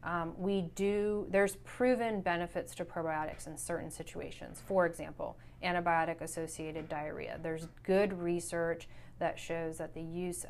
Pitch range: 160-175 Hz